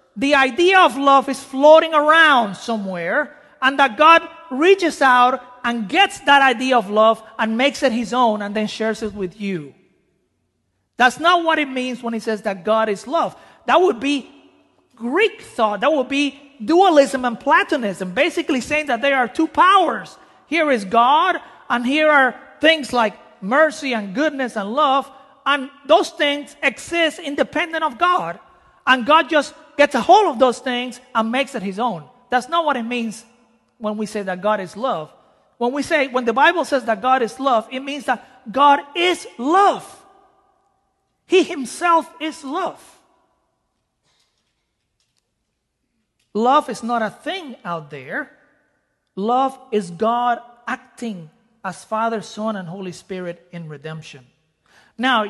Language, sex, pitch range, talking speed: English, male, 225-310 Hz, 160 wpm